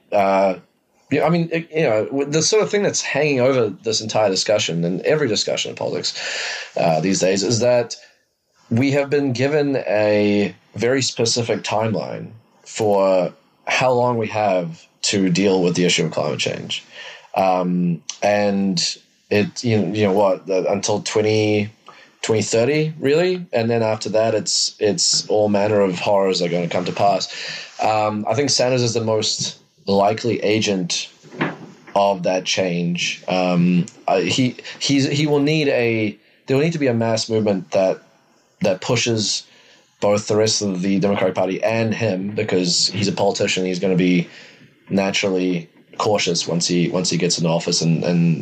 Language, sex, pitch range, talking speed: English, male, 95-120 Hz, 170 wpm